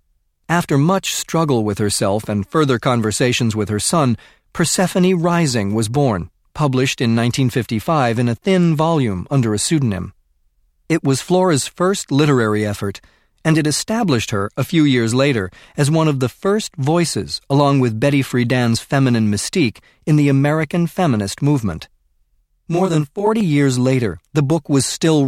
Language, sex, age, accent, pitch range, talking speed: English, male, 40-59, American, 110-150 Hz, 155 wpm